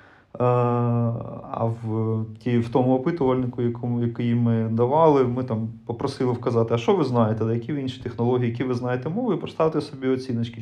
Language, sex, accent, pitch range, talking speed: Ukrainian, male, native, 120-145 Hz, 165 wpm